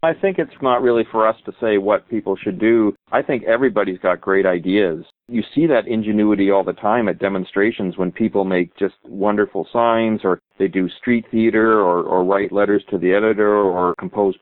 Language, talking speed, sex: English, 200 wpm, male